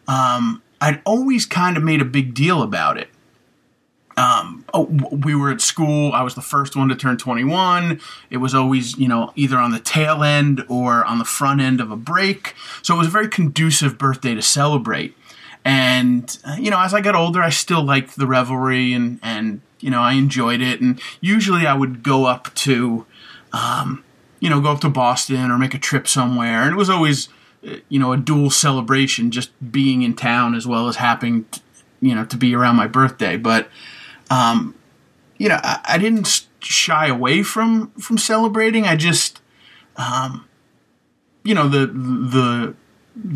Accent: American